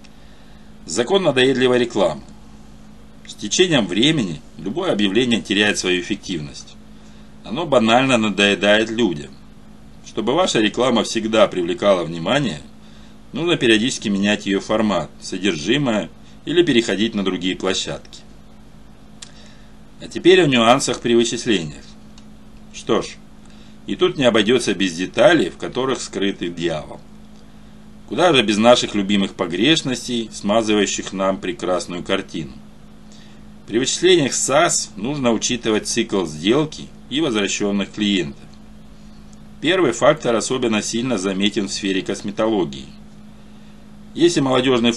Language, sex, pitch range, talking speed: Russian, male, 85-120 Hz, 105 wpm